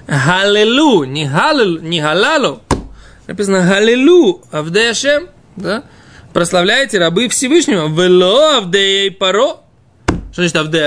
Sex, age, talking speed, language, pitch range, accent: male, 20-39, 105 wpm, Russian, 155-220 Hz, native